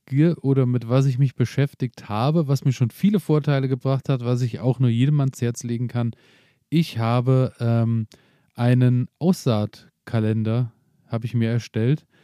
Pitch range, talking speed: 125-145 Hz, 155 wpm